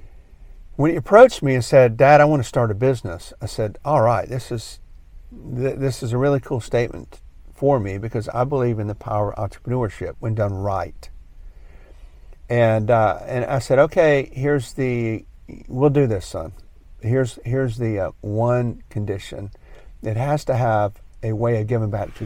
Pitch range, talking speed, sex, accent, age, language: 90-125 Hz, 180 wpm, male, American, 50-69, English